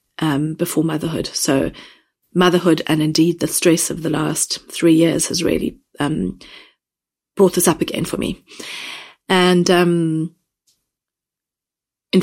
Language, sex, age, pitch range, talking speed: English, female, 30-49, 155-180 Hz, 130 wpm